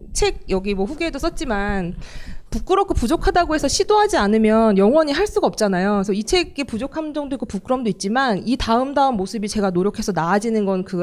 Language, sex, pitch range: Korean, female, 195-270 Hz